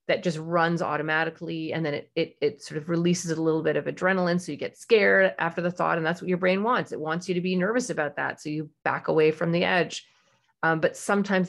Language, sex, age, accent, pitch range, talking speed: English, female, 30-49, American, 155-195 Hz, 250 wpm